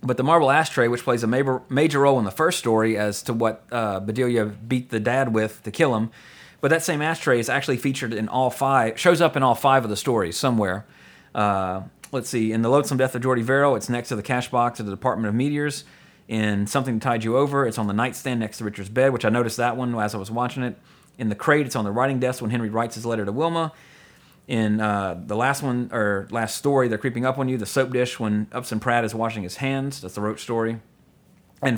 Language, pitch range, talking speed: English, 110-140 Hz, 245 wpm